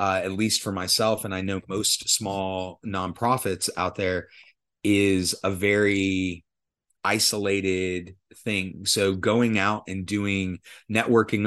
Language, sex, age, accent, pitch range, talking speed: English, male, 30-49, American, 95-110 Hz, 125 wpm